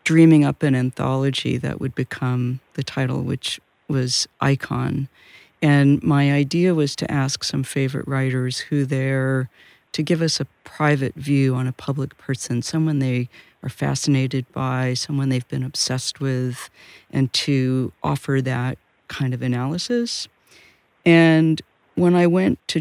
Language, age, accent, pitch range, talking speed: English, 50-69, American, 130-150 Hz, 145 wpm